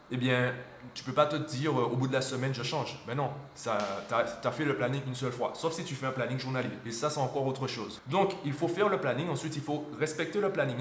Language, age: French, 20-39